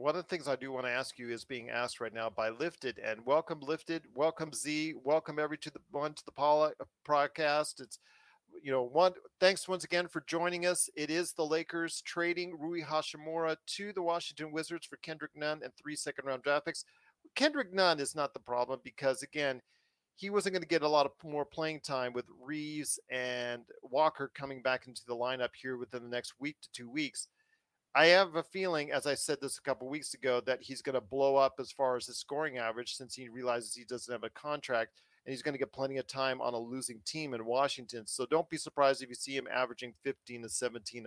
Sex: male